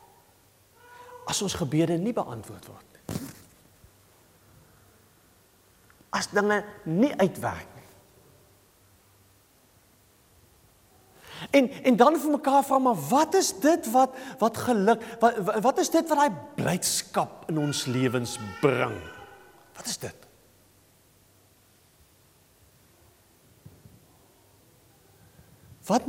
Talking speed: 85 wpm